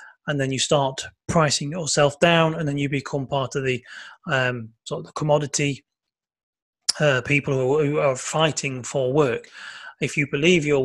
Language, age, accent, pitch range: English, 30-49, British, 130-155 Hz